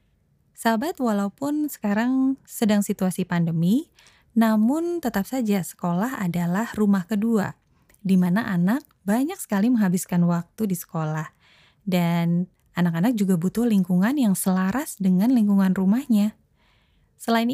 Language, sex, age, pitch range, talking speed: Indonesian, female, 20-39, 180-225 Hz, 115 wpm